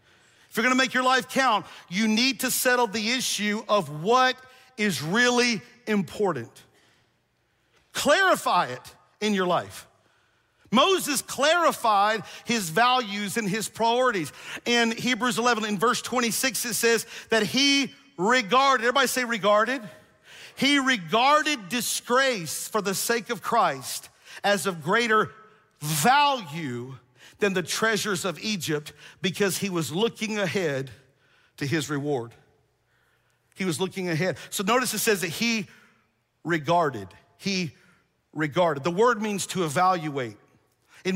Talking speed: 130 wpm